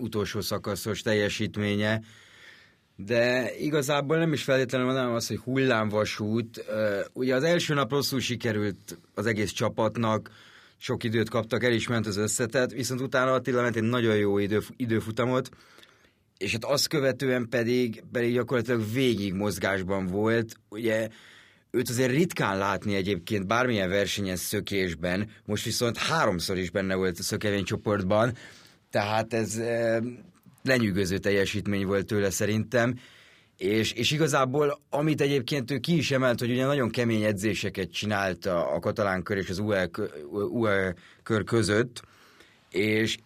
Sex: male